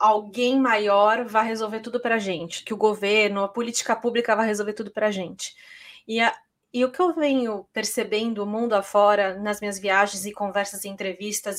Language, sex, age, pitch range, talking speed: Portuguese, female, 20-39, 210-250 Hz, 185 wpm